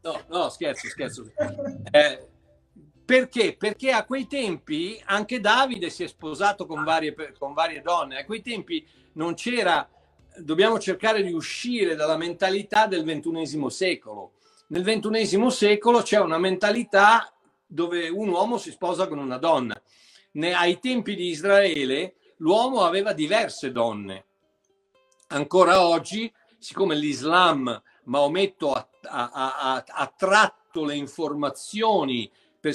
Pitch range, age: 145-215 Hz, 50-69